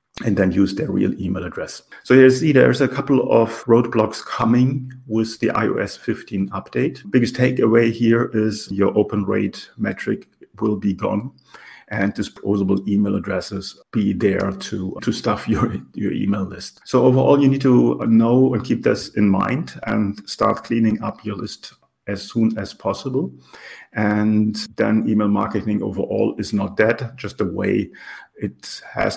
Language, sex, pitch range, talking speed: English, male, 100-115 Hz, 165 wpm